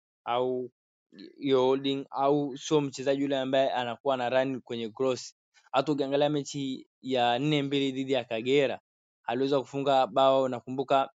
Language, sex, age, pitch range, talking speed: Swahili, male, 20-39, 120-140 Hz, 140 wpm